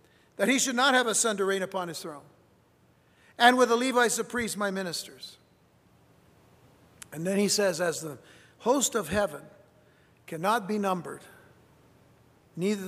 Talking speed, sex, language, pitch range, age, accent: 155 wpm, male, English, 160-210 Hz, 60-79, American